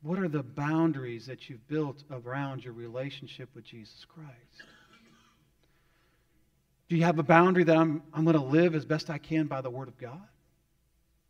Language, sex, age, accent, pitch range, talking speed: English, male, 40-59, American, 135-170 Hz, 170 wpm